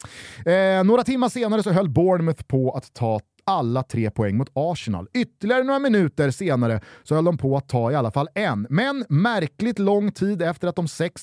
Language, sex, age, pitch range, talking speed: Swedish, male, 30-49, 130-200 Hz, 190 wpm